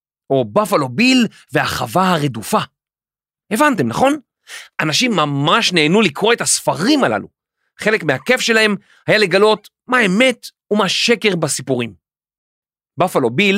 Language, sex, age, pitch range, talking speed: Hebrew, male, 40-59, 150-225 Hz, 110 wpm